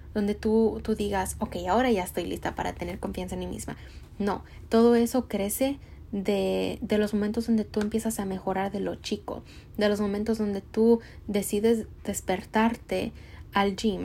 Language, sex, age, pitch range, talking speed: English, female, 20-39, 185-220 Hz, 170 wpm